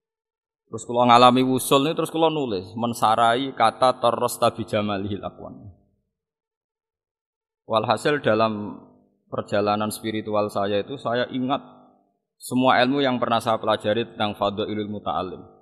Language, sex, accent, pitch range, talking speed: Indonesian, male, native, 110-150 Hz, 110 wpm